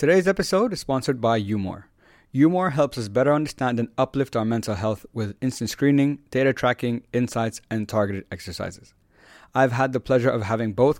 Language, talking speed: English, 175 wpm